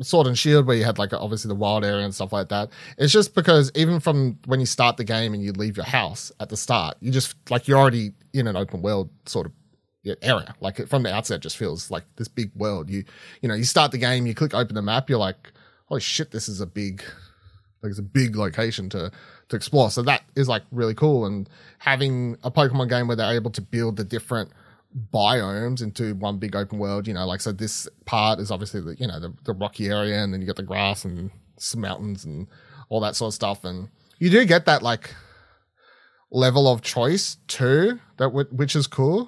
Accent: Australian